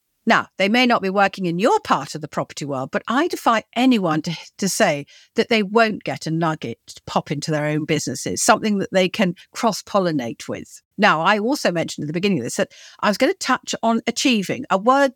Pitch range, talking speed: 180-255 Hz, 225 wpm